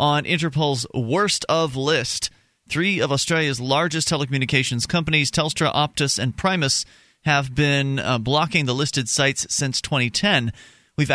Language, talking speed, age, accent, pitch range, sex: English, 135 wpm, 30-49, American, 125-155 Hz, male